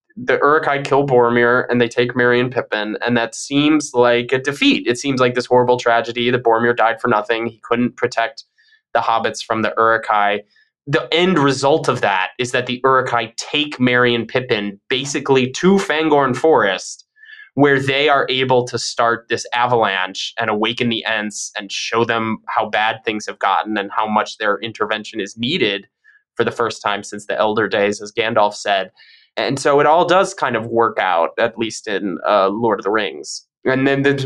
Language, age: English, 20-39